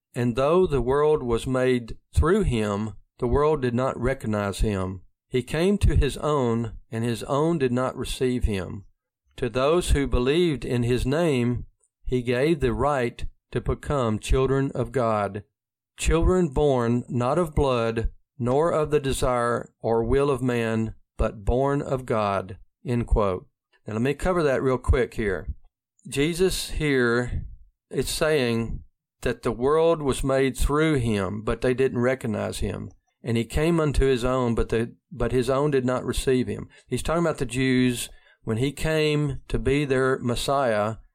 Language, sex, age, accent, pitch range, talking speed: English, male, 50-69, American, 115-140 Hz, 165 wpm